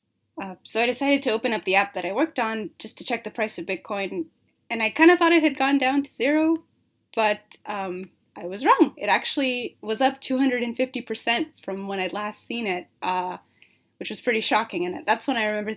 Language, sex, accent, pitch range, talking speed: English, female, American, 190-255 Hz, 215 wpm